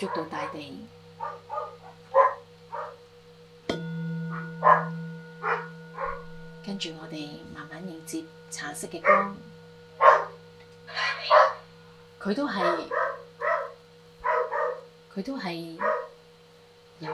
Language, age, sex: Chinese, 30-49, female